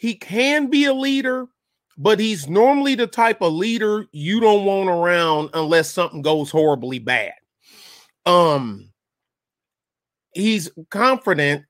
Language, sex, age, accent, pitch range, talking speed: English, male, 30-49, American, 150-205 Hz, 125 wpm